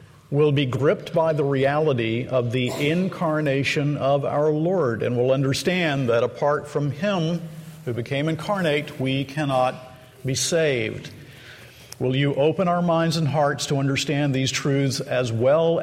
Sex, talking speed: male, 150 wpm